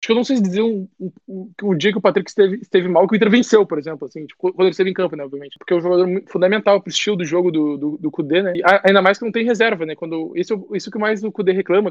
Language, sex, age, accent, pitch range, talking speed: Portuguese, male, 20-39, Brazilian, 175-210 Hz, 305 wpm